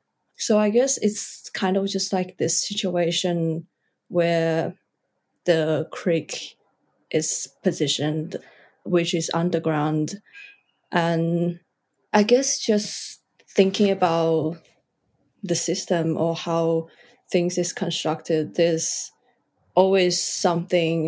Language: English